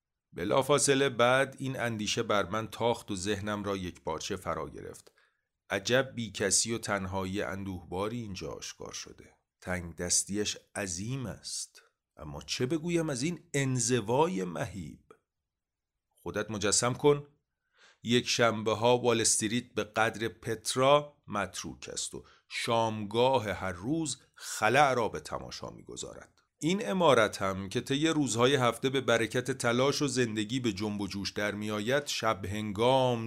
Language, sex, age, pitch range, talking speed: Persian, male, 40-59, 105-130 Hz, 135 wpm